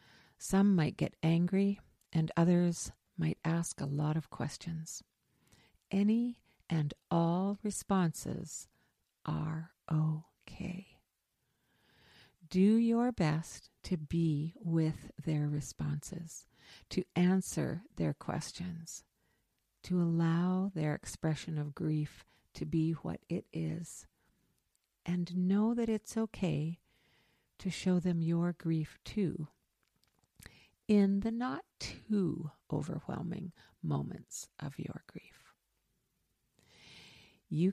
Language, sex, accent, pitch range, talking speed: English, female, American, 150-180 Hz, 95 wpm